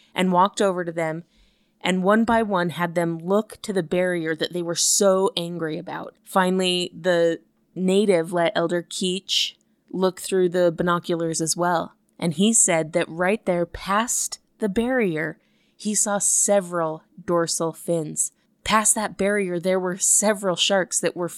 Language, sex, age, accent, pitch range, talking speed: English, female, 20-39, American, 175-215 Hz, 155 wpm